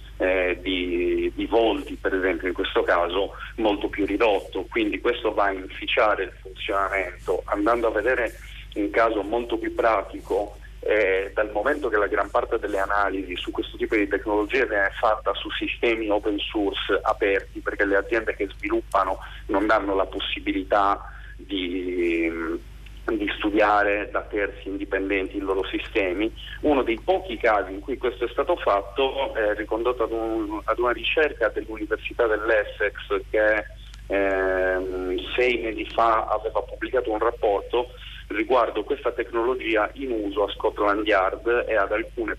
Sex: male